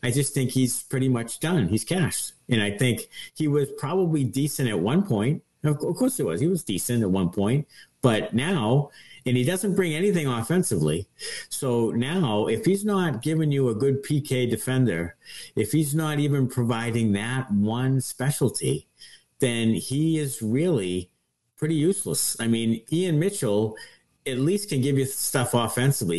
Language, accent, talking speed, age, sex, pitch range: English, American, 165 wpm, 50-69, male, 110-145 Hz